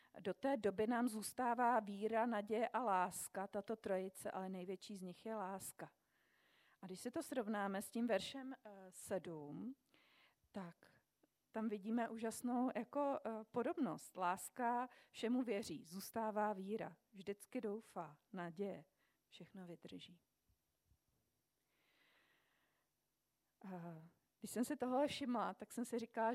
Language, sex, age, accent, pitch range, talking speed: Czech, female, 40-59, native, 195-240 Hz, 120 wpm